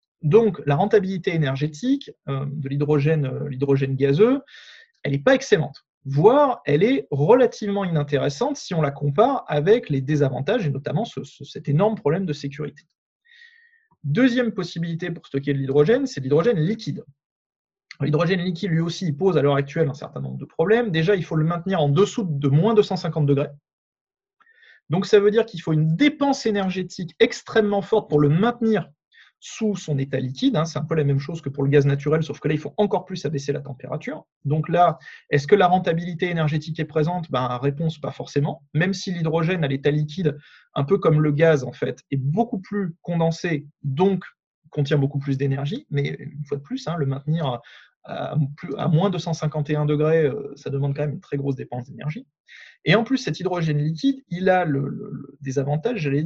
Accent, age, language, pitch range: French, 30-49, French, 145-195 Hz